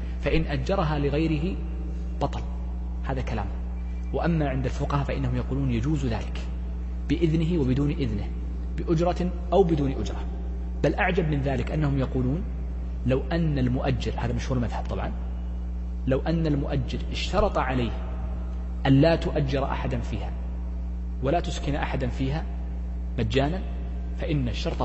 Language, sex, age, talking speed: Arabic, male, 30-49, 120 wpm